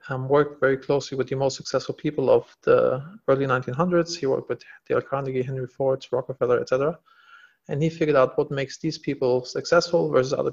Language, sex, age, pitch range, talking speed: English, male, 40-59, 135-180 Hz, 195 wpm